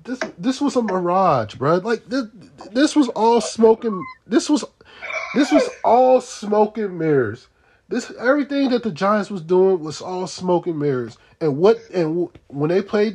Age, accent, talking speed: 20-39, American, 175 wpm